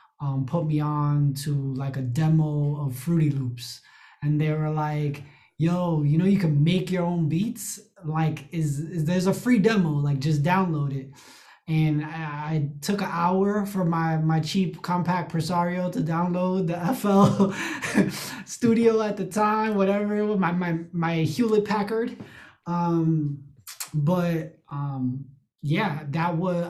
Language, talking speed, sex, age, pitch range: English, 155 wpm, male, 20-39, 145-175 Hz